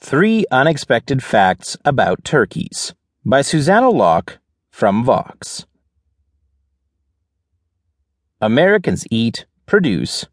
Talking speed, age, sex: 75 wpm, 30-49, male